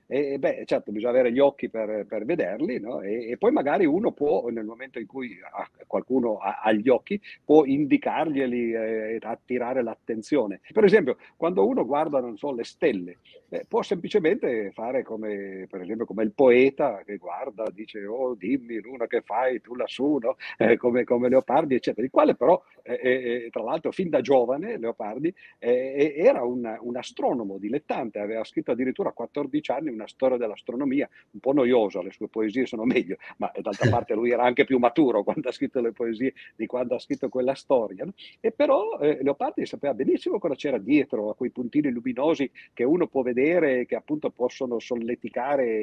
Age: 50-69